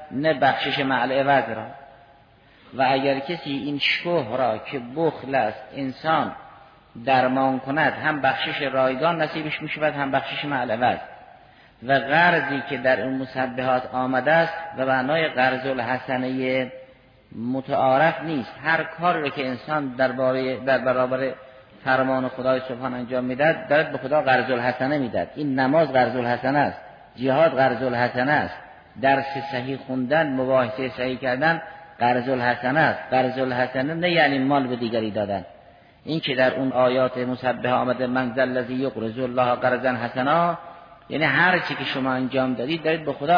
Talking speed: 155 wpm